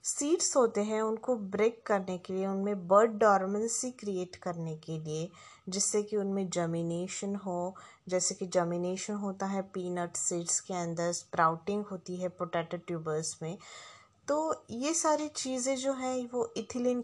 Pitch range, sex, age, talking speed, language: 175-230 Hz, female, 20-39, 150 wpm, Hindi